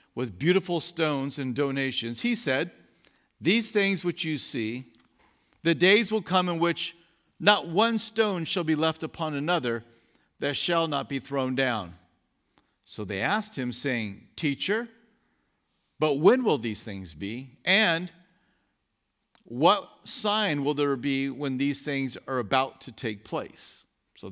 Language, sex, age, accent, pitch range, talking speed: English, male, 50-69, American, 120-170 Hz, 145 wpm